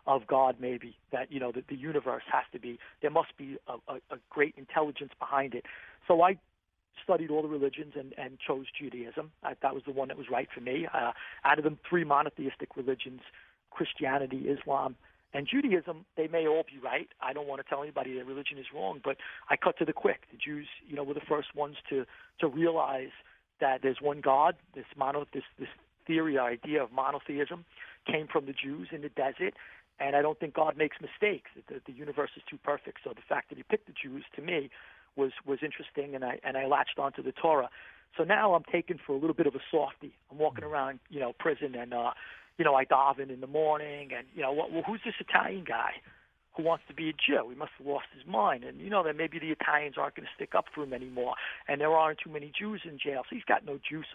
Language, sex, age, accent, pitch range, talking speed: English, male, 40-59, American, 135-155 Hz, 235 wpm